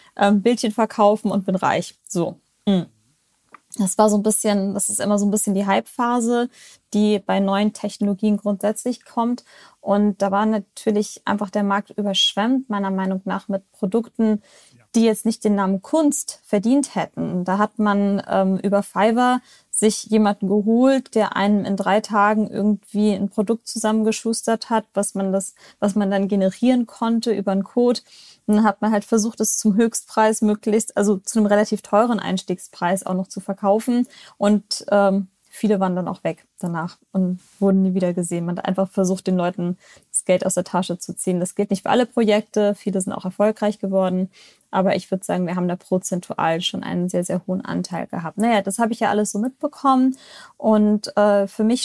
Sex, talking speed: female, 180 wpm